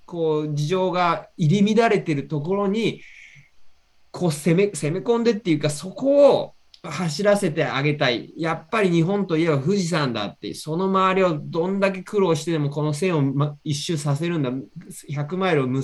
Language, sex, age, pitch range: Japanese, male, 20-39, 145-195 Hz